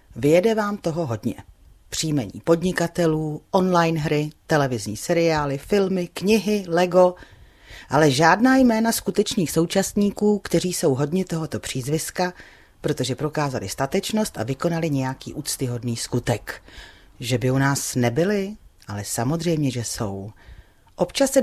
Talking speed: 120 wpm